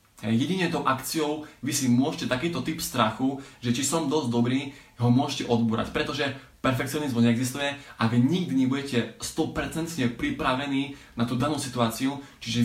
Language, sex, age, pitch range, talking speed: Slovak, male, 20-39, 120-145 Hz, 145 wpm